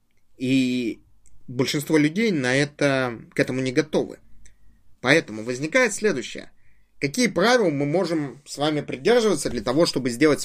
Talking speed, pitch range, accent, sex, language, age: 130 wpm, 130-170 Hz, native, male, Russian, 20-39